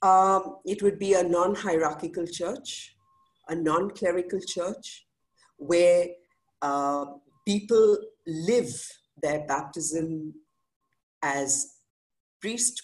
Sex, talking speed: female, 85 wpm